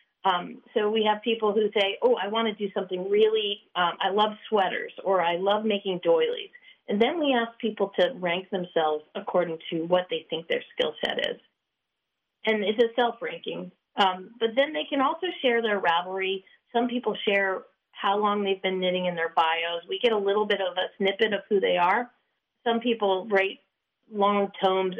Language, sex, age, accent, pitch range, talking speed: English, female, 40-59, American, 185-235 Hz, 190 wpm